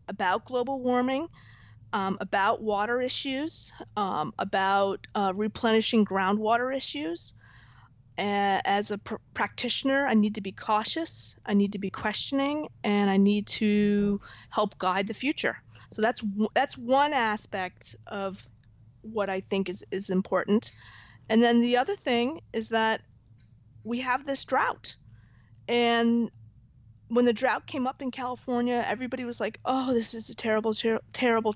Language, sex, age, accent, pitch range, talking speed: English, female, 40-59, American, 185-250 Hz, 145 wpm